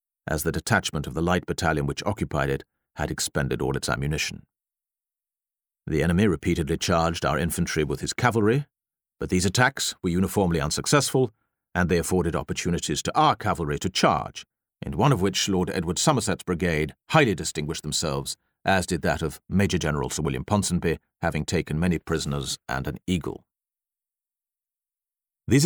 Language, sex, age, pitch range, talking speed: English, male, 50-69, 75-100 Hz, 155 wpm